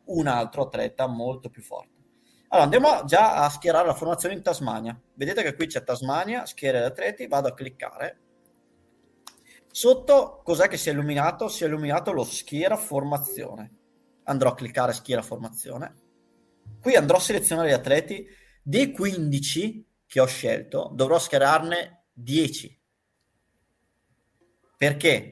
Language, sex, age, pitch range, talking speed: Italian, male, 30-49, 125-170 Hz, 135 wpm